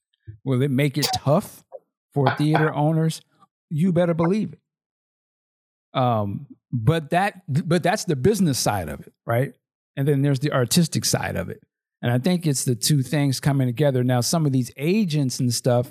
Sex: male